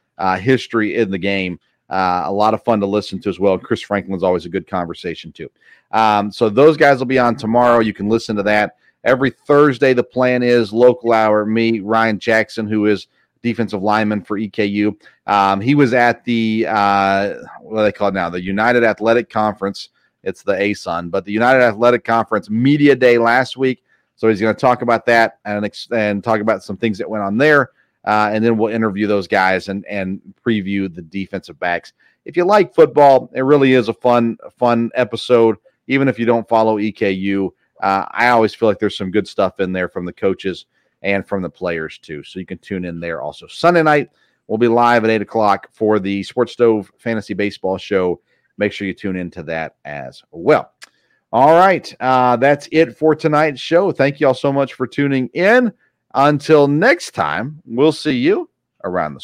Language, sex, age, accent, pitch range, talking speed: English, male, 40-59, American, 100-125 Hz, 200 wpm